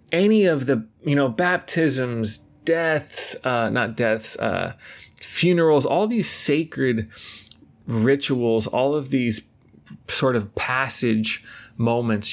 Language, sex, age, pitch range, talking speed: English, male, 20-39, 115-165 Hz, 110 wpm